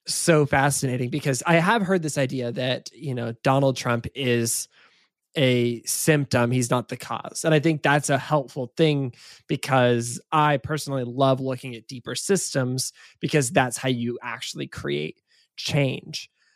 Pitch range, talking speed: 130-165 Hz, 150 wpm